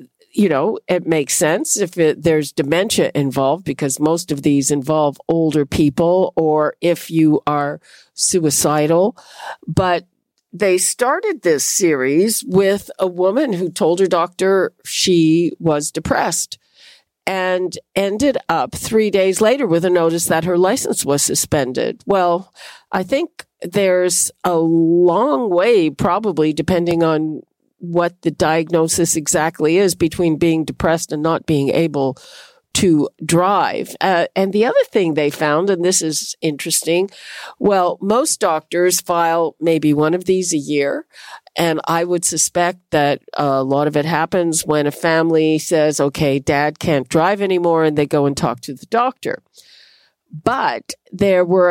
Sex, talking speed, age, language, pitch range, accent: female, 145 wpm, 50-69, English, 155-185 Hz, American